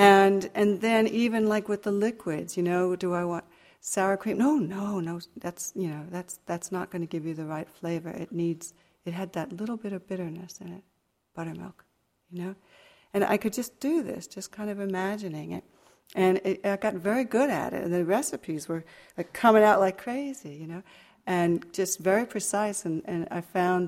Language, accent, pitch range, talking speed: English, American, 170-205 Hz, 210 wpm